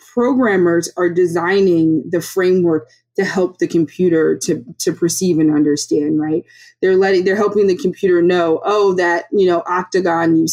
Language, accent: English, American